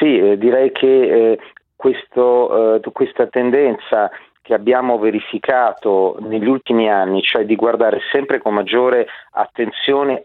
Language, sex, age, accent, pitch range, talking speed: Italian, male, 40-59, native, 110-135 Hz, 125 wpm